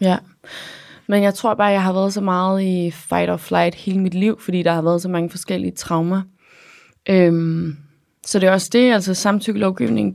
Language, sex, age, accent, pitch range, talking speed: English, female, 20-39, Danish, 170-200 Hz, 195 wpm